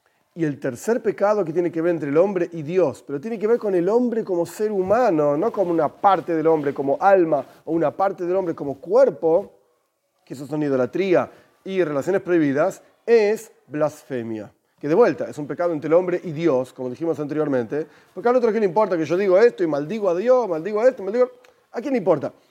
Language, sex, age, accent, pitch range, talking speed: Spanish, male, 40-59, Argentinian, 145-200 Hz, 220 wpm